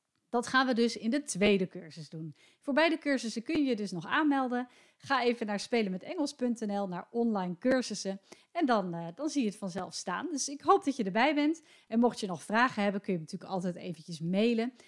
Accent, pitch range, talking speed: Dutch, 190-255 Hz, 215 wpm